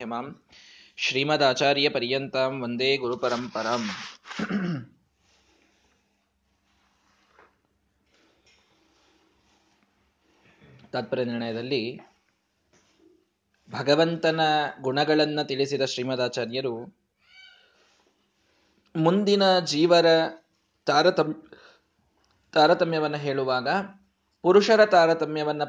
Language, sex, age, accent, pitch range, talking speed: Kannada, male, 20-39, native, 135-180 Hz, 40 wpm